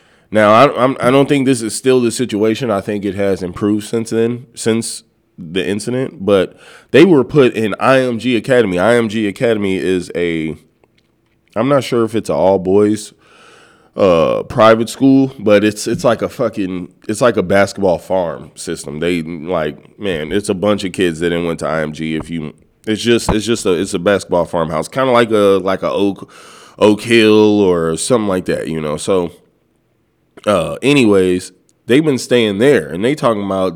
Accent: American